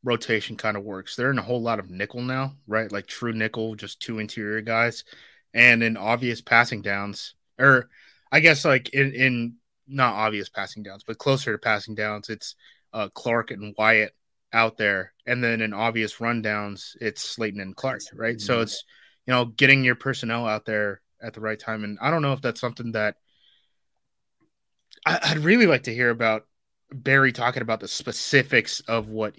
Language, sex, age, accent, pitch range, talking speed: English, male, 20-39, American, 110-120 Hz, 185 wpm